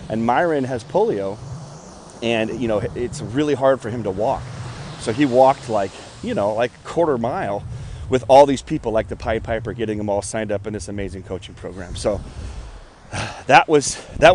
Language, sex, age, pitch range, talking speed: English, male, 30-49, 105-140 Hz, 190 wpm